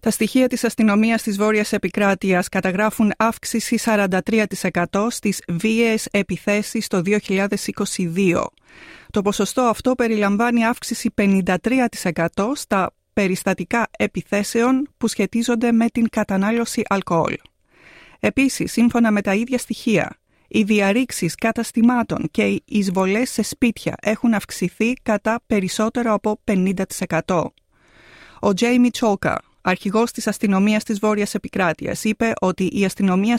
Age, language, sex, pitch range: 30-49, Greek, female, 190-230 Hz